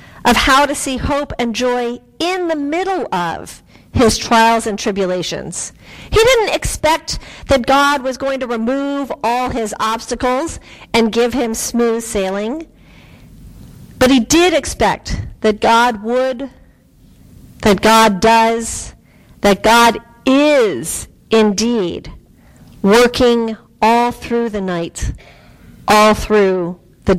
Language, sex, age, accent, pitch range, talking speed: English, female, 40-59, American, 225-285 Hz, 120 wpm